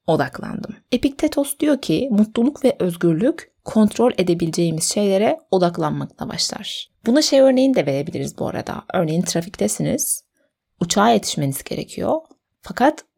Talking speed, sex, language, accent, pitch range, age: 115 wpm, female, Turkish, native, 170-240 Hz, 30-49